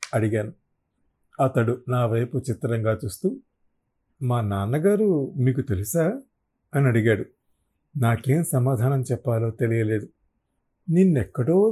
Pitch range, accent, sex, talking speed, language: 115-165 Hz, native, male, 85 wpm, Telugu